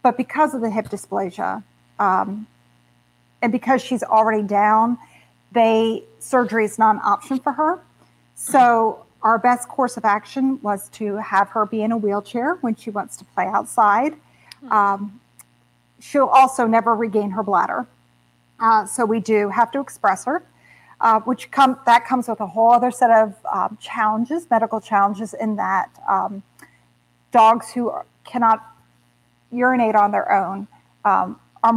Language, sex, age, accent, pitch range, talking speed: English, female, 40-59, American, 200-245 Hz, 155 wpm